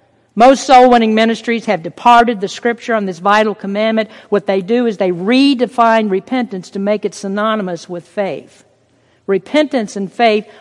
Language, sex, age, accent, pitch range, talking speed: English, female, 50-69, American, 210-275 Hz, 155 wpm